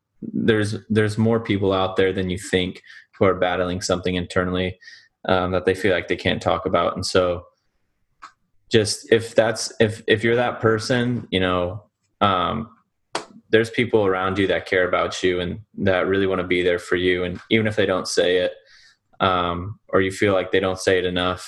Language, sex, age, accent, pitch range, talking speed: English, male, 20-39, American, 90-105 Hz, 195 wpm